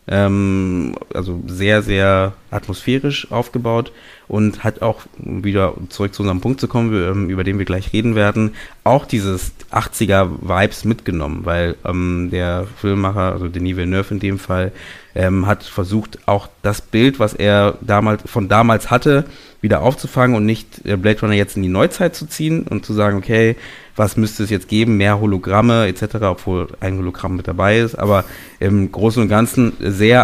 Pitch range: 95-110 Hz